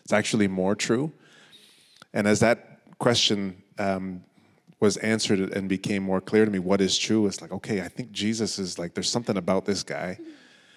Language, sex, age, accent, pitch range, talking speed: English, male, 30-49, American, 95-110 Hz, 185 wpm